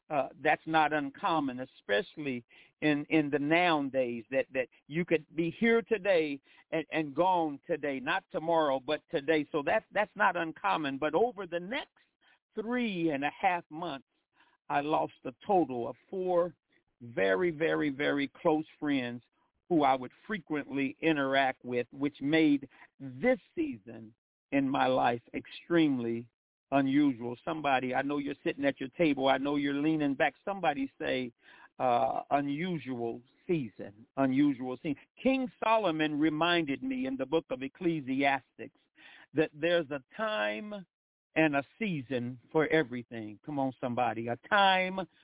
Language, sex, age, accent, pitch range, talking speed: English, male, 50-69, American, 135-175 Hz, 145 wpm